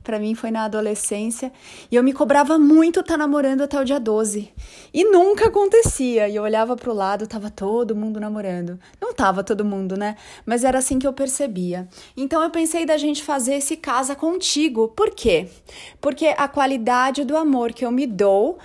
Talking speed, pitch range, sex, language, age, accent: 190 wpm, 230-300 Hz, female, Portuguese, 20-39, Brazilian